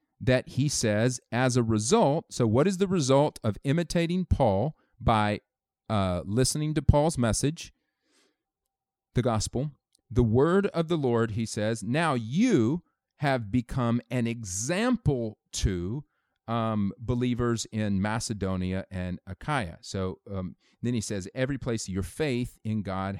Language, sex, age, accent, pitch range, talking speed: English, male, 40-59, American, 110-150 Hz, 135 wpm